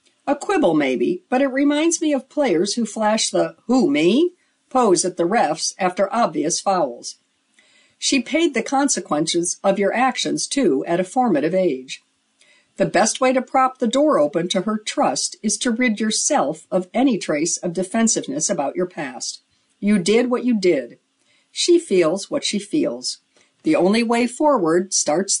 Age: 60-79